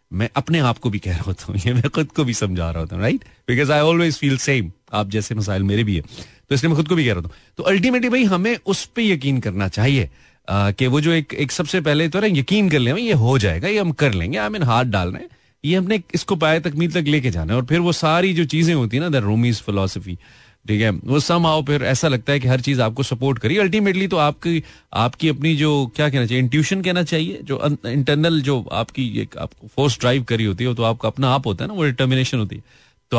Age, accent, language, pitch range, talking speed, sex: 30-49, native, Hindi, 105-160 Hz, 250 wpm, male